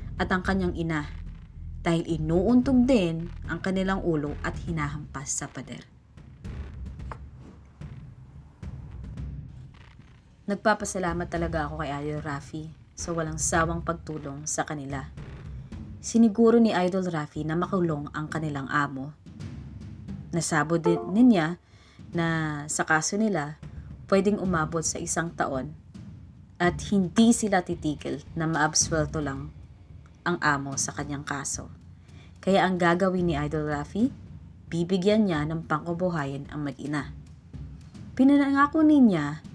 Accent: native